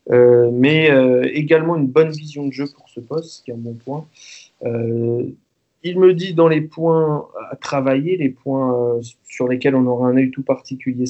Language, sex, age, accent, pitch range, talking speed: French, male, 20-39, French, 120-140 Hz, 200 wpm